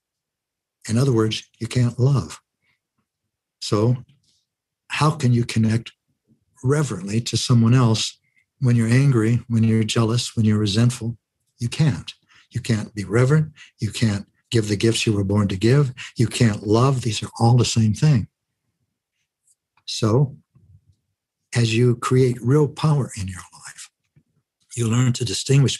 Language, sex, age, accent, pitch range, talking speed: English, male, 60-79, American, 105-125 Hz, 145 wpm